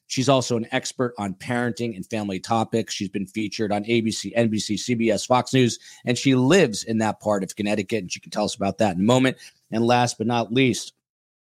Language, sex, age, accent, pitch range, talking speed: English, male, 40-59, American, 105-120 Hz, 215 wpm